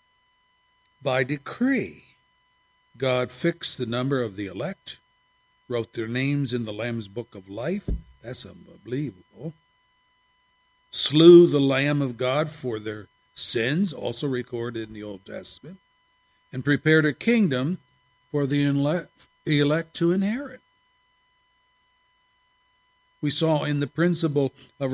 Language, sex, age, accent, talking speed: English, male, 60-79, American, 120 wpm